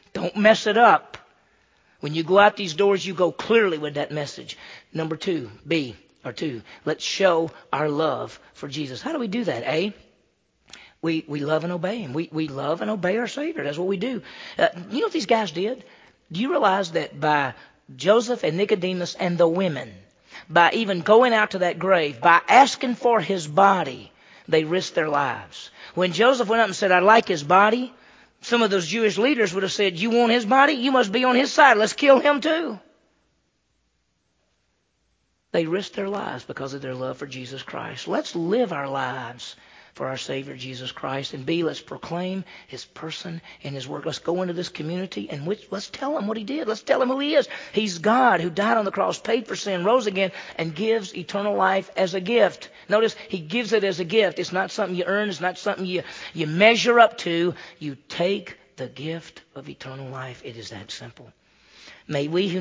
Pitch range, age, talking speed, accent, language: 155-220 Hz, 40-59, 205 wpm, American, English